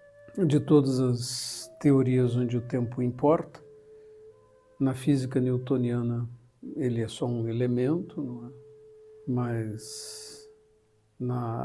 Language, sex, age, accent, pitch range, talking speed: Portuguese, male, 60-79, Brazilian, 125-145 Hz, 105 wpm